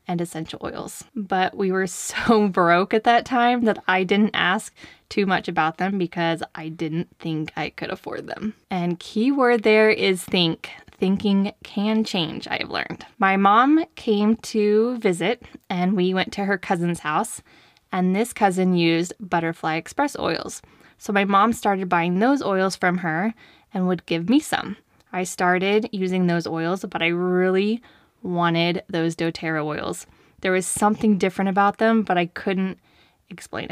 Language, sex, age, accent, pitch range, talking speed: English, female, 10-29, American, 175-215 Hz, 165 wpm